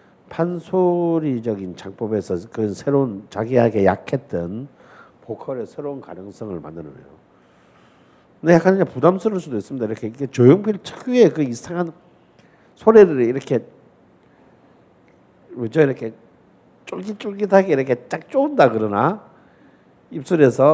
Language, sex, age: Korean, male, 50-69